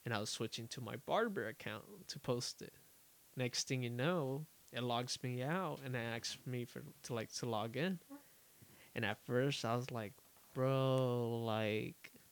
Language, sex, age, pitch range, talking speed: English, male, 20-39, 115-130 Hz, 180 wpm